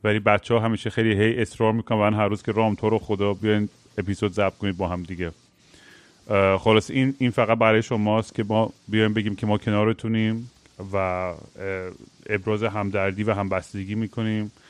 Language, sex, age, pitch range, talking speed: Persian, male, 30-49, 100-115 Hz, 175 wpm